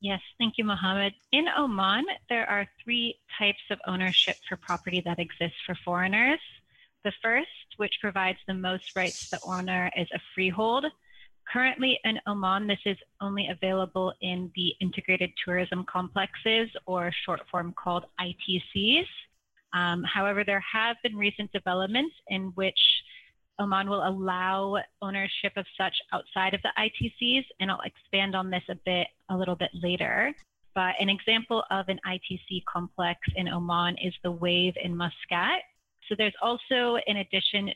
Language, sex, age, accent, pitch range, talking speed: English, female, 30-49, American, 180-210 Hz, 155 wpm